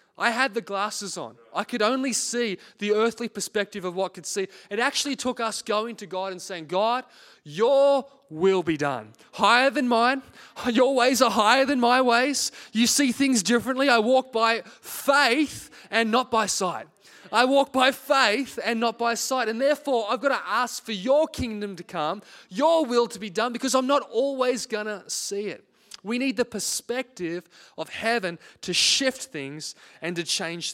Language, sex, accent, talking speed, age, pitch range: English, male, Australian, 185 wpm, 20-39, 200-250 Hz